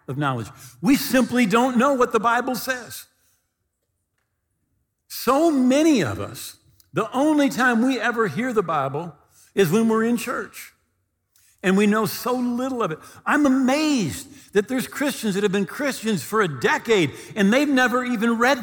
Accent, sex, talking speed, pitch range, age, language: American, male, 165 wpm, 160-230 Hz, 50-69, English